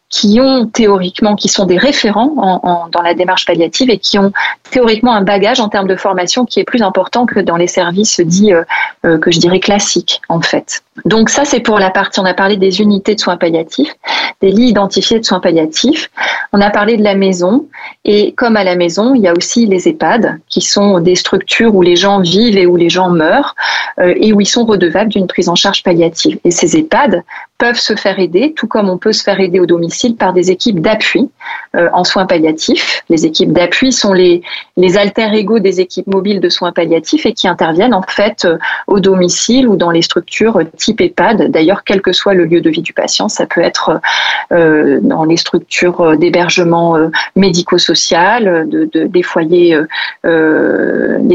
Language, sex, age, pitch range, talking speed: French, female, 30-49, 175-215 Hz, 205 wpm